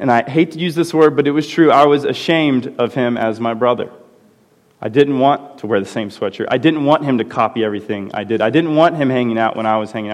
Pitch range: 115-170 Hz